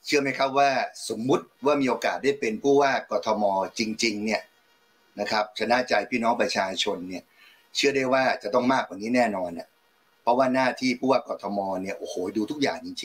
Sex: male